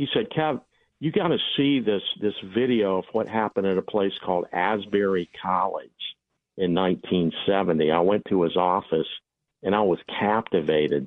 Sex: male